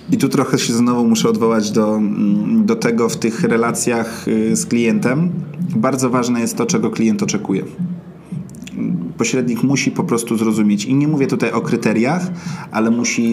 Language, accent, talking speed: Polish, native, 160 wpm